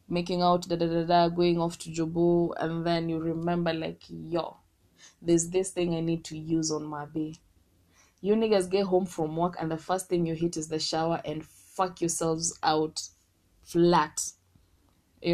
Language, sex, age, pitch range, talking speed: English, female, 20-39, 160-185 Hz, 170 wpm